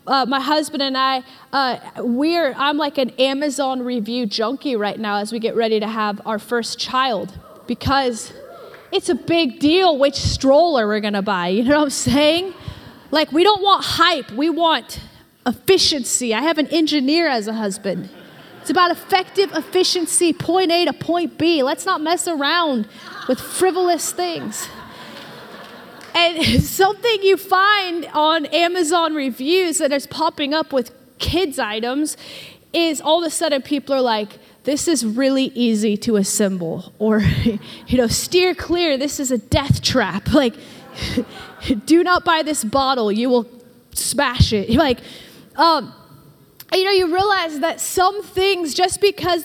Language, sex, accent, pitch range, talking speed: English, female, American, 245-335 Hz, 160 wpm